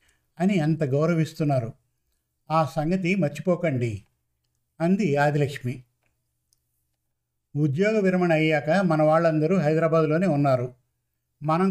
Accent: native